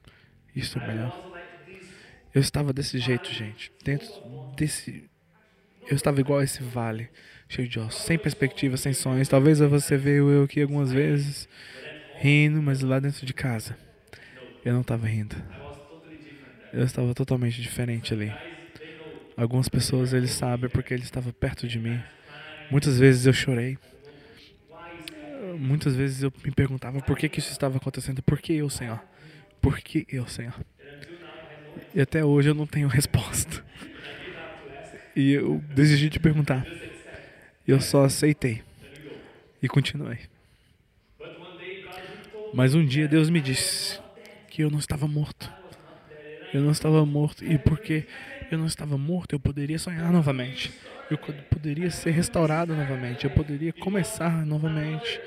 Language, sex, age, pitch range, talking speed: English, male, 20-39, 130-155 Hz, 140 wpm